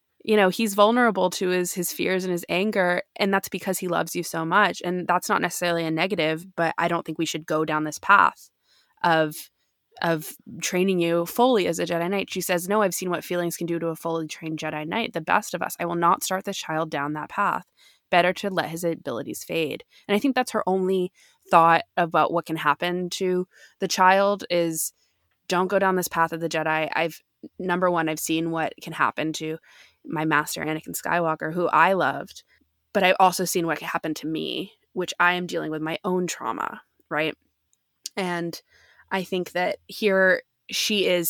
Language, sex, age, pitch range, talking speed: English, female, 20-39, 165-190 Hz, 205 wpm